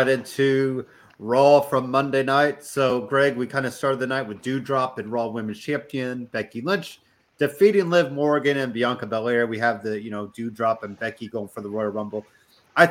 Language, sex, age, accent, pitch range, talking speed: English, male, 30-49, American, 115-140 Hz, 190 wpm